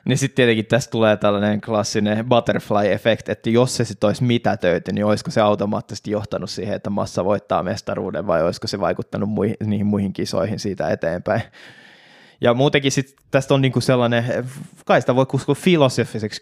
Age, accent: 20-39, native